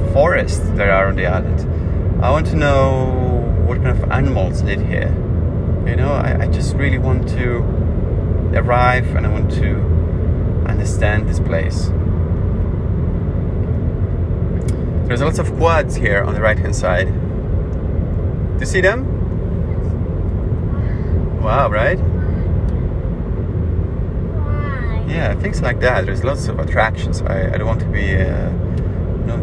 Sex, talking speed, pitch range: male, 130 wpm, 85-100 Hz